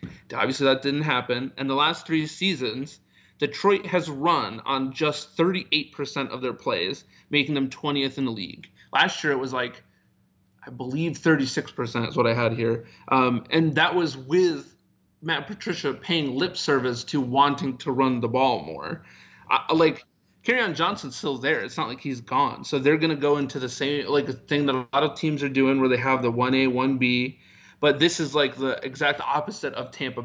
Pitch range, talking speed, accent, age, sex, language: 130-150 Hz, 200 wpm, American, 30-49, male, English